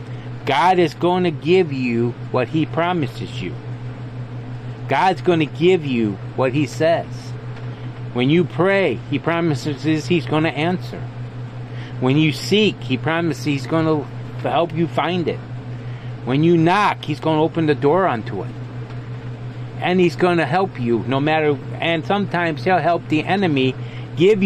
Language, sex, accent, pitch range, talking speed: English, male, American, 120-165 Hz, 160 wpm